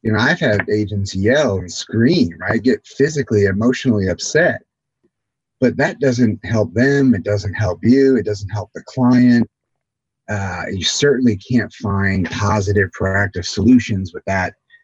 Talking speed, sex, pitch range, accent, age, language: 150 wpm, male, 100-130 Hz, American, 30-49, English